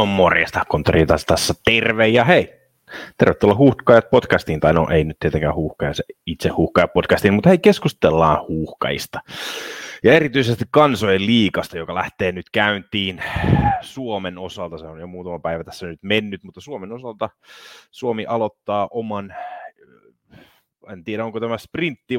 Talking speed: 140 wpm